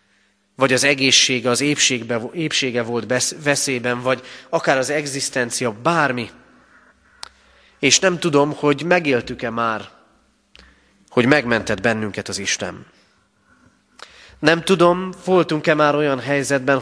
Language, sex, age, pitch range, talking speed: Hungarian, male, 30-49, 100-140 Hz, 105 wpm